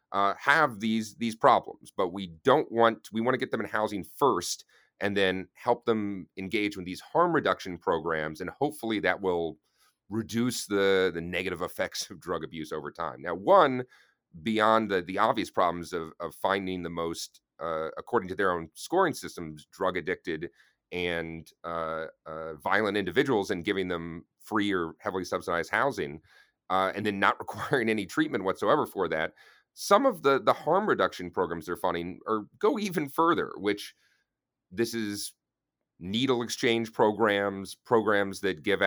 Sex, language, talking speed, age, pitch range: male, English, 165 wpm, 40-59, 90-110 Hz